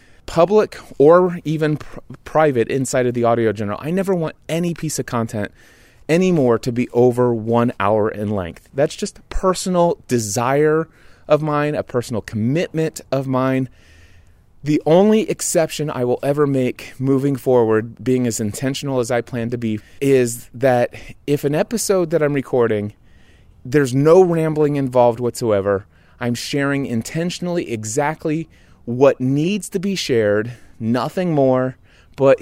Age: 30-49